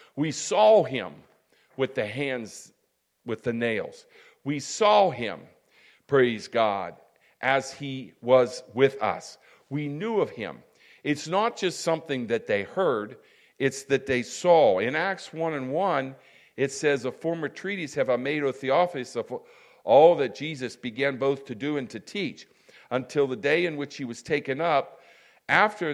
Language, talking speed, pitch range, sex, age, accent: English, 160 wpm, 130-180 Hz, male, 50-69, American